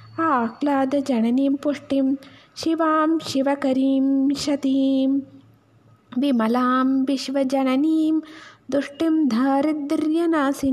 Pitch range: 275-320 Hz